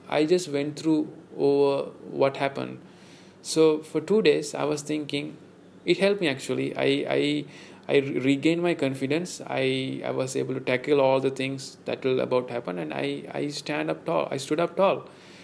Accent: Indian